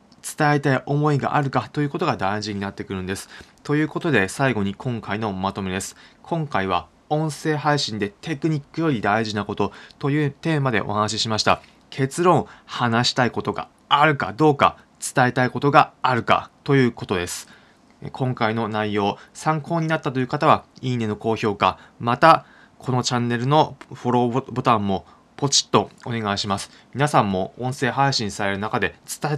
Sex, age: male, 20-39